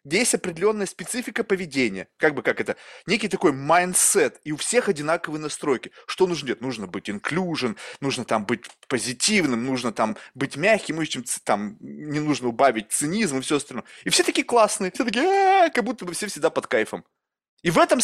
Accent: native